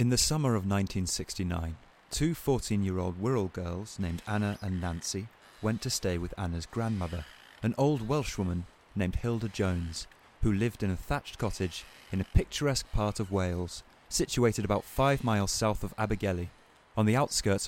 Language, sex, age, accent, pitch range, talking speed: English, male, 30-49, British, 90-115 Hz, 160 wpm